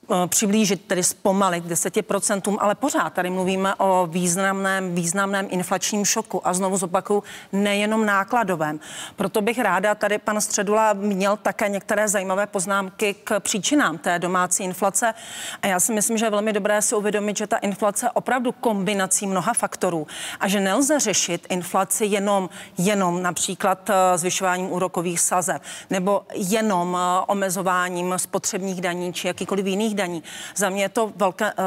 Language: Czech